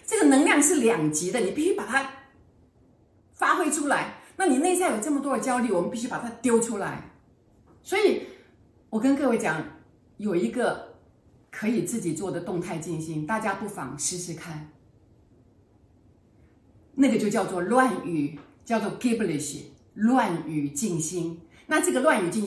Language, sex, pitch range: Chinese, female, 165-275 Hz